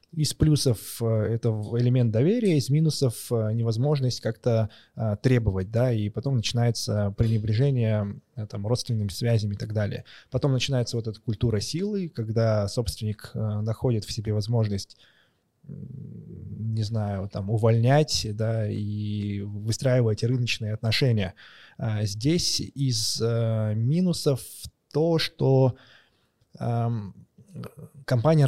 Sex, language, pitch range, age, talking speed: male, Russian, 110-135 Hz, 20-39, 100 wpm